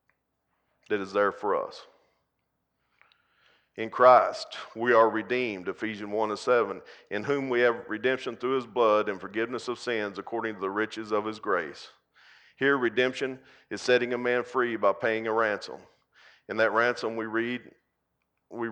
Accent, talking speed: American, 160 wpm